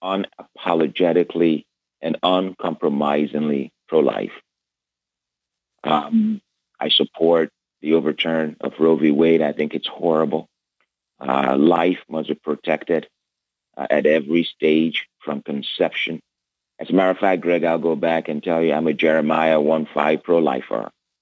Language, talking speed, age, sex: English, 125 wpm, 40-59, male